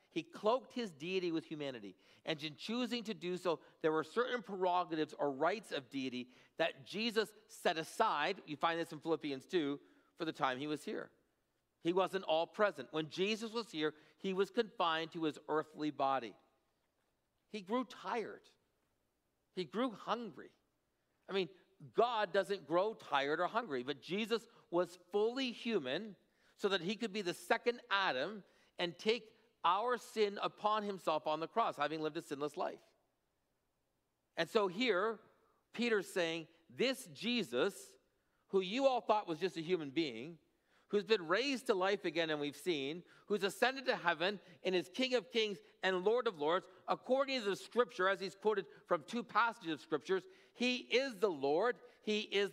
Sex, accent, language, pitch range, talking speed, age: male, American, English, 160-220 Hz, 170 wpm, 50-69